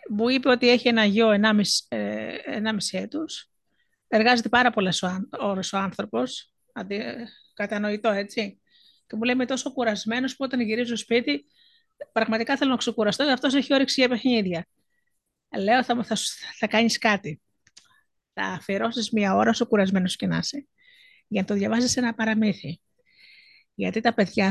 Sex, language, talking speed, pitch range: female, Greek, 145 wpm, 205-260 Hz